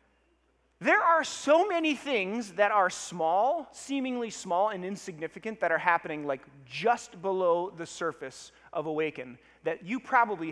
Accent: American